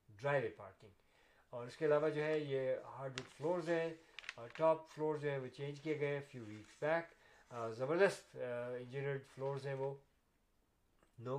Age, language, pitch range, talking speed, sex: 50-69, Urdu, 125-160 Hz, 170 wpm, male